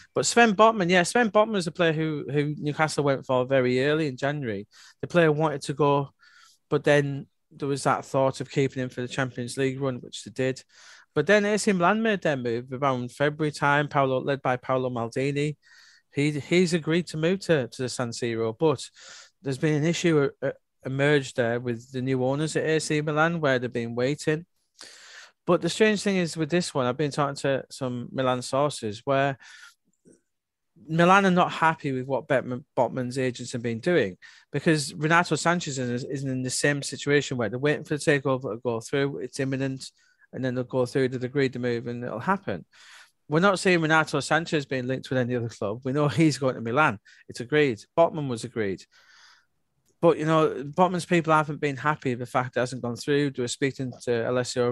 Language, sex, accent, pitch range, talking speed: English, male, British, 125-155 Hz, 200 wpm